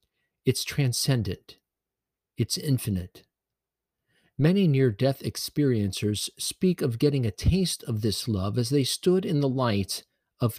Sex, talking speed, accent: male, 125 wpm, American